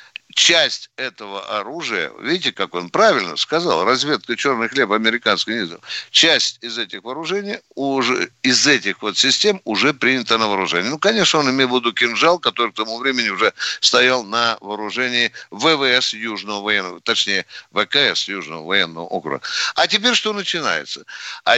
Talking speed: 150 wpm